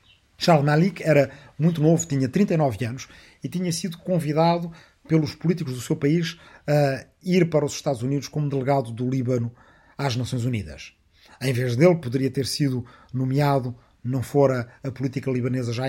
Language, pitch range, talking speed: Portuguese, 120-150 Hz, 160 wpm